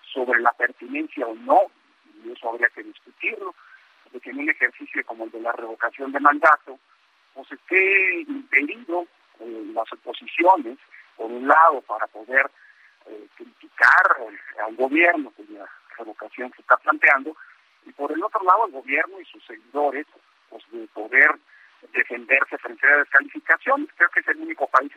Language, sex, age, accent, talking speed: Spanish, male, 50-69, Mexican, 155 wpm